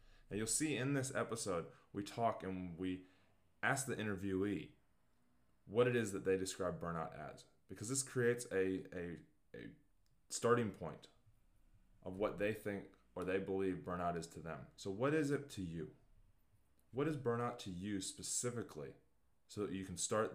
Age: 20-39